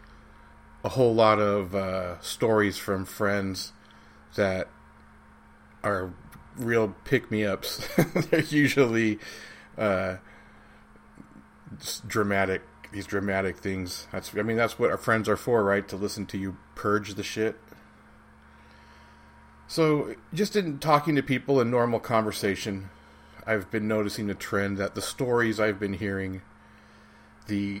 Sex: male